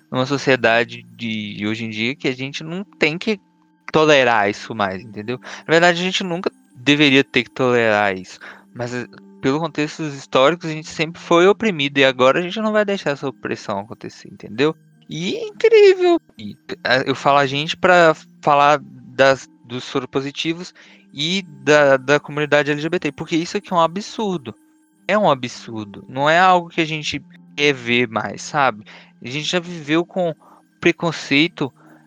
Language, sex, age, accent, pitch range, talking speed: Portuguese, male, 20-39, Brazilian, 130-175 Hz, 170 wpm